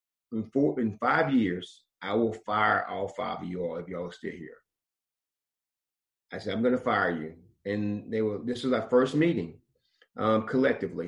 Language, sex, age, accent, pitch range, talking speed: English, male, 40-59, American, 105-145 Hz, 185 wpm